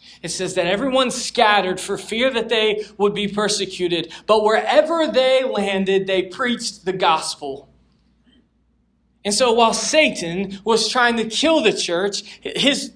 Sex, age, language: male, 20-39, English